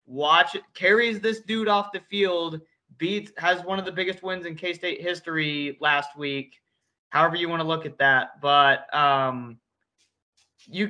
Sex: male